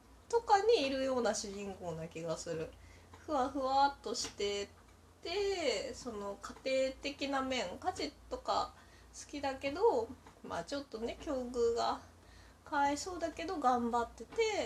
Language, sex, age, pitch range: Japanese, female, 20-39, 195-295 Hz